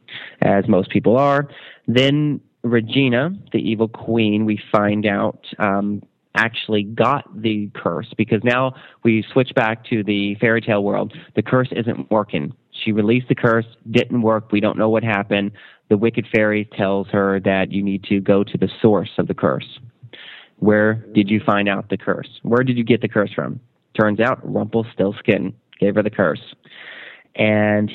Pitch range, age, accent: 100-120 Hz, 30-49, American